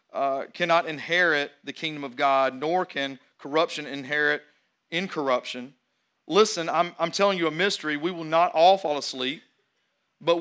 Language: English